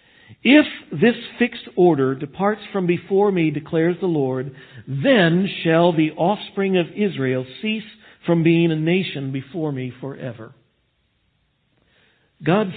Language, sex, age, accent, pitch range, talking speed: English, male, 50-69, American, 145-210 Hz, 120 wpm